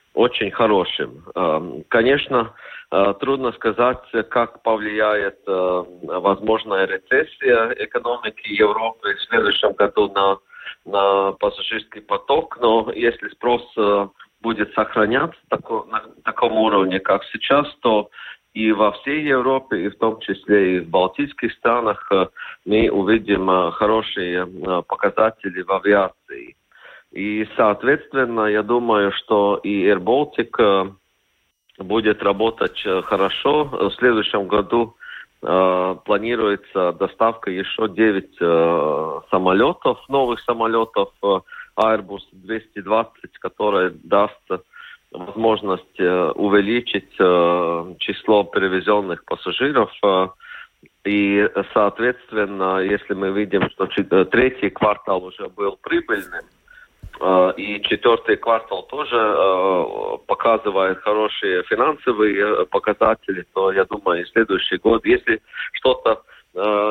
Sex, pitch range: male, 100-130 Hz